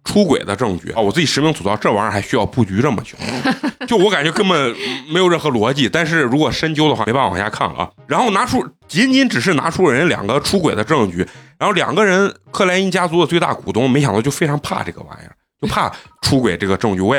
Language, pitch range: Chinese, 100-160 Hz